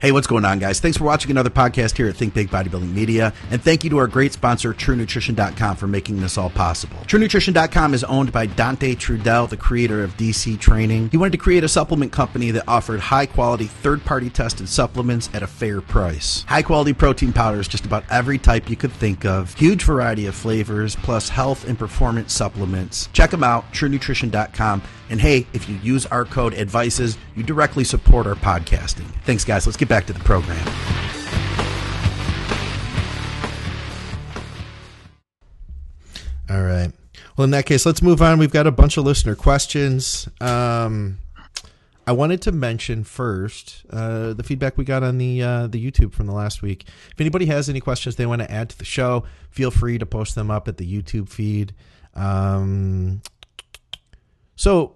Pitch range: 100-130 Hz